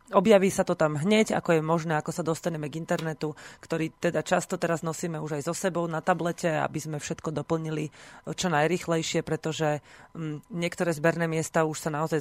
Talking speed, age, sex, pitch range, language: 180 wpm, 30-49, female, 155-180 Hz, Slovak